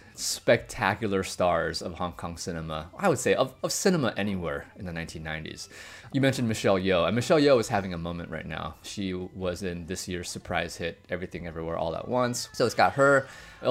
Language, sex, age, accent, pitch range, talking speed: English, male, 20-39, American, 90-120 Hz, 200 wpm